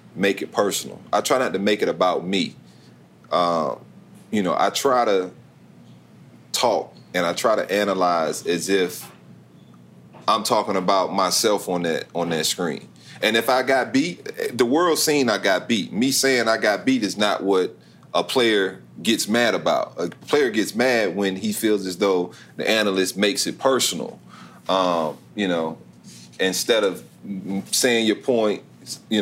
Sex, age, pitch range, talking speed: male, 40-59, 90-110 Hz, 165 wpm